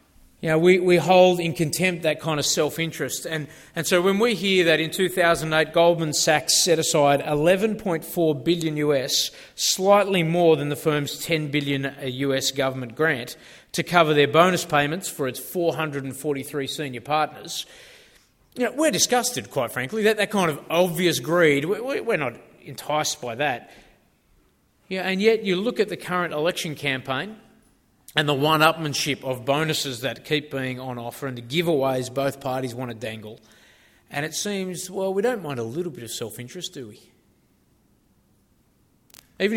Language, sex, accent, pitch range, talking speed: English, male, Australian, 140-180 Hz, 165 wpm